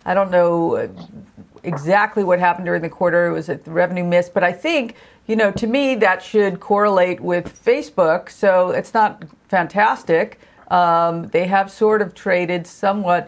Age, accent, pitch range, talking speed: 50-69, American, 170-210 Hz, 165 wpm